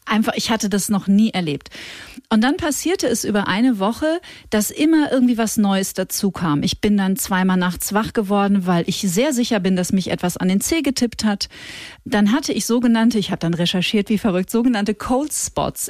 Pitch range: 195-245 Hz